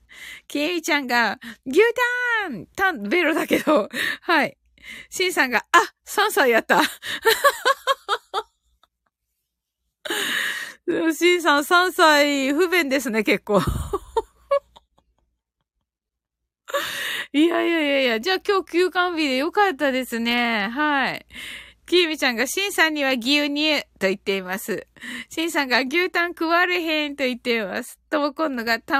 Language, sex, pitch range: Japanese, female, 240-355 Hz